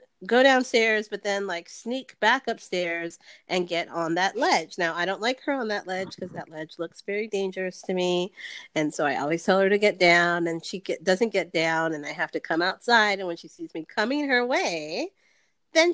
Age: 40-59